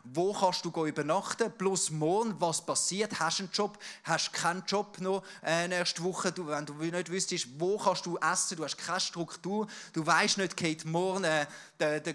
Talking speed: 180 wpm